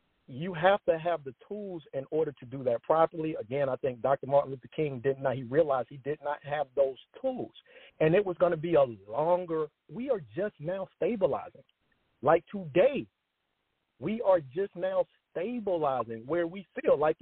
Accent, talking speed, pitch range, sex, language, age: American, 185 wpm, 150-215 Hz, male, English, 40-59